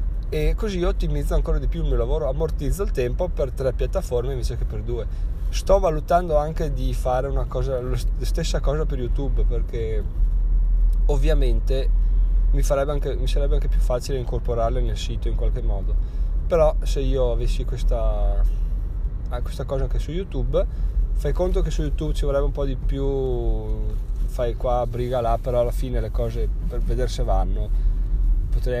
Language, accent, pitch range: Italian, native, 100-140 Hz